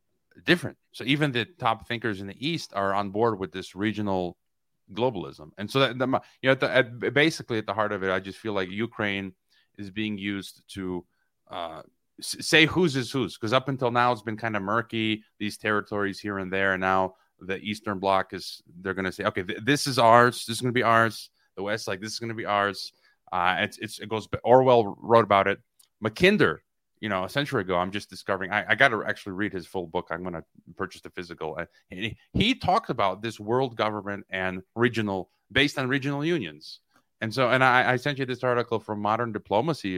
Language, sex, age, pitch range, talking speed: English, male, 30-49, 95-125 Hz, 210 wpm